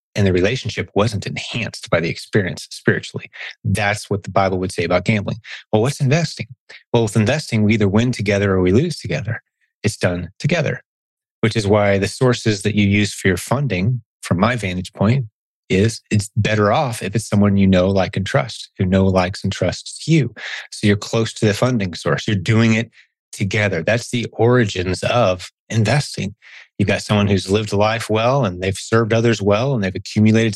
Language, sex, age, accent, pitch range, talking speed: English, male, 30-49, American, 95-115 Hz, 190 wpm